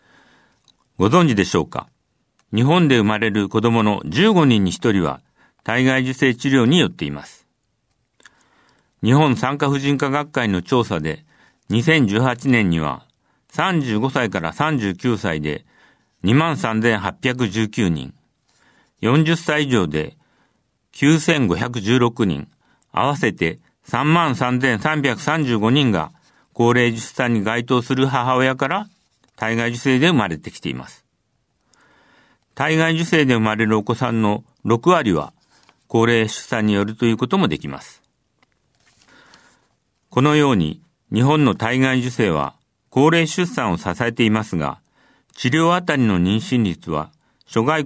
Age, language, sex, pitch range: 50-69, Japanese, male, 110-140 Hz